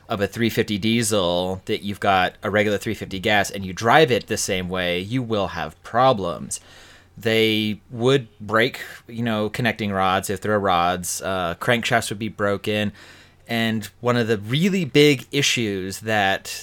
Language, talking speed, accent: English, 165 wpm, American